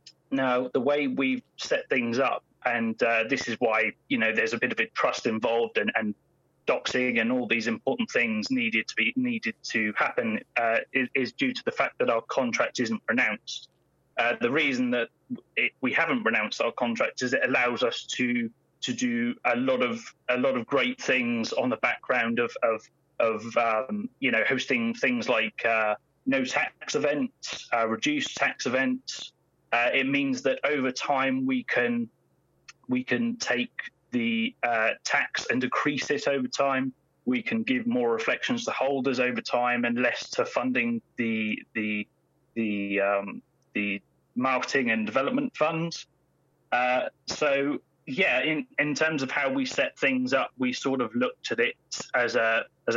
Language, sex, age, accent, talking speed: English, male, 30-49, British, 175 wpm